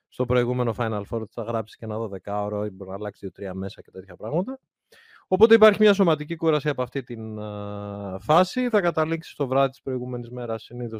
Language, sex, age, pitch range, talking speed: Greek, male, 30-49, 115-155 Hz, 190 wpm